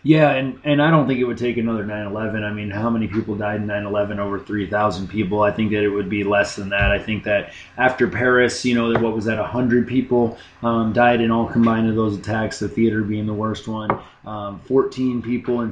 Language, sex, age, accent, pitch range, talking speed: English, male, 20-39, American, 105-125 Hz, 250 wpm